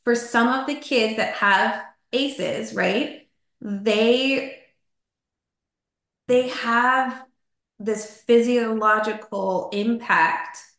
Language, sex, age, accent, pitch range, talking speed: English, female, 20-39, American, 195-240 Hz, 85 wpm